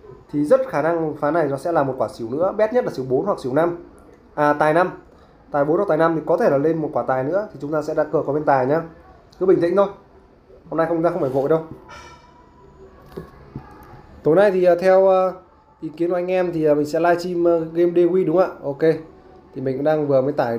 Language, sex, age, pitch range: English, male, 20-39, 135-170 Hz